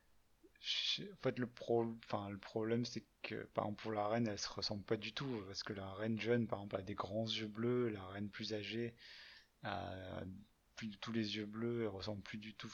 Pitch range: 100-115 Hz